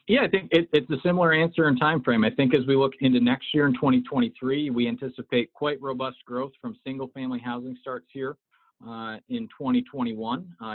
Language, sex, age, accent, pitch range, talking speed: English, male, 40-59, American, 120-150 Hz, 190 wpm